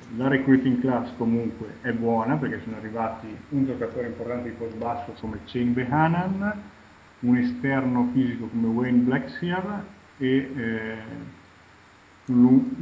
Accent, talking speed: native, 130 wpm